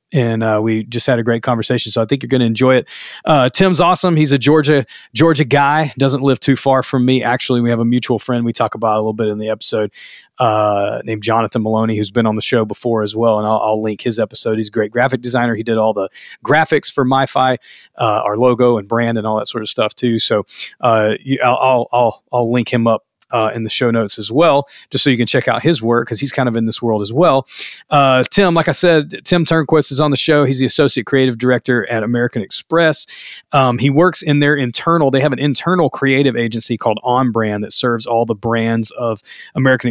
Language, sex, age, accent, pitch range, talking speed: English, male, 30-49, American, 115-140 Hz, 240 wpm